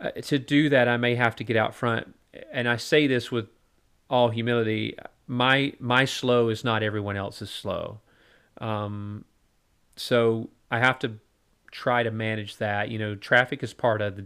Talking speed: 175 wpm